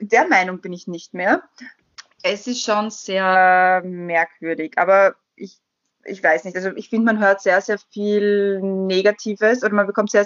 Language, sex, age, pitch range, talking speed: German, female, 20-39, 195-230 Hz, 170 wpm